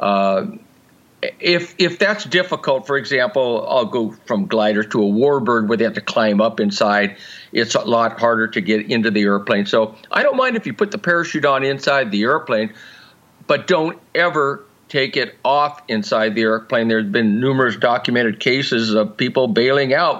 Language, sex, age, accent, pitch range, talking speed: English, male, 50-69, American, 115-170 Hz, 180 wpm